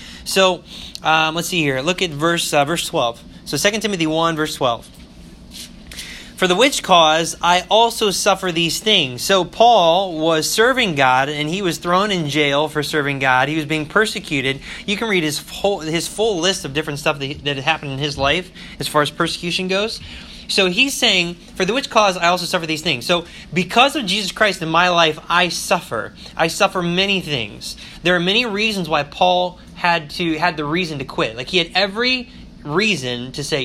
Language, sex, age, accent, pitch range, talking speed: English, male, 20-39, American, 150-195 Hz, 200 wpm